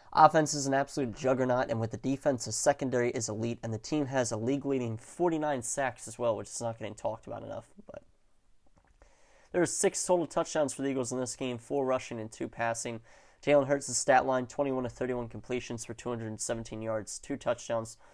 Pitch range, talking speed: 115-135 Hz, 195 wpm